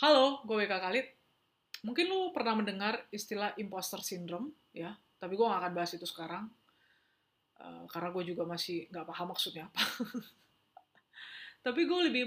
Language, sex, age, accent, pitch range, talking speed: Indonesian, female, 20-39, native, 185-240 Hz, 150 wpm